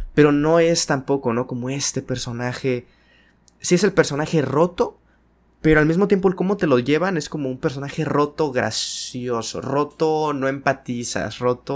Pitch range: 110-145 Hz